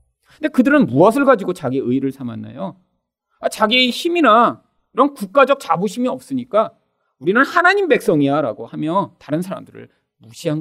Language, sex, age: Korean, male, 40-59